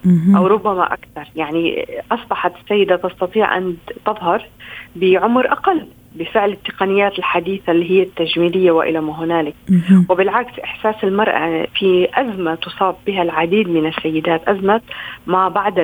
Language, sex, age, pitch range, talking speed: Arabic, female, 40-59, 175-220 Hz, 125 wpm